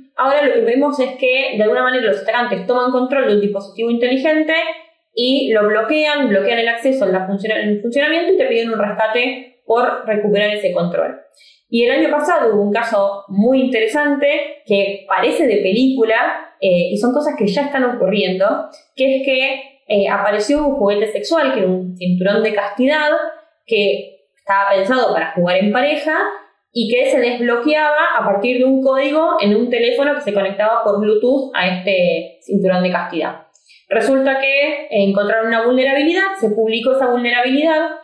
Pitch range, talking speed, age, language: 205-275 Hz, 170 wpm, 20-39, Spanish